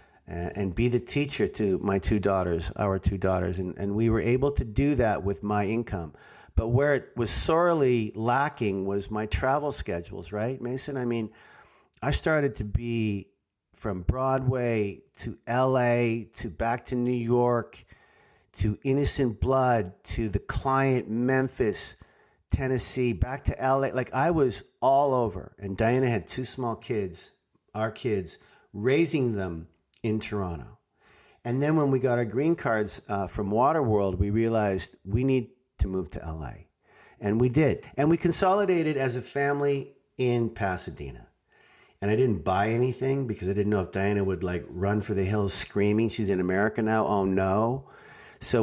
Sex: male